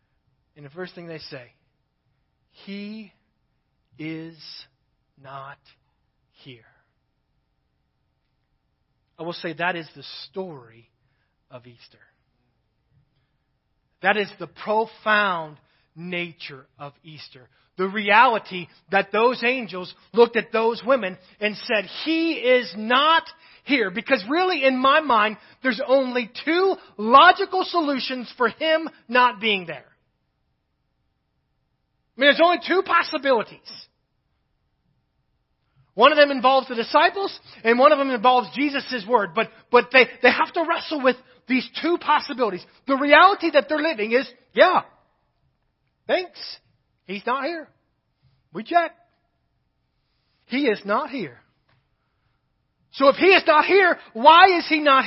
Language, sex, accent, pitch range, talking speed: English, male, American, 180-290 Hz, 125 wpm